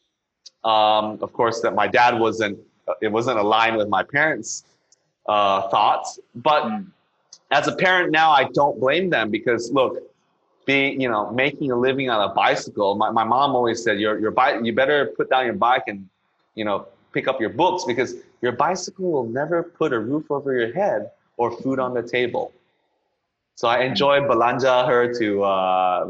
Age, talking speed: 30-49, 180 wpm